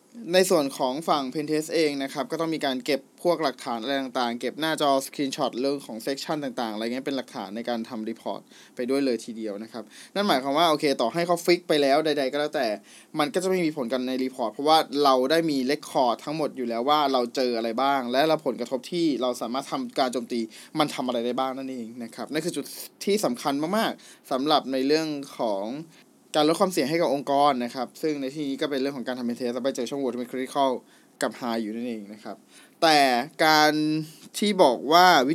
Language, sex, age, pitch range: Thai, male, 20-39, 130-160 Hz